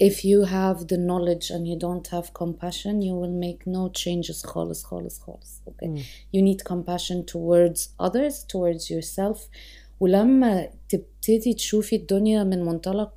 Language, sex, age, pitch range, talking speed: Arabic, female, 30-49, 175-210 Hz, 140 wpm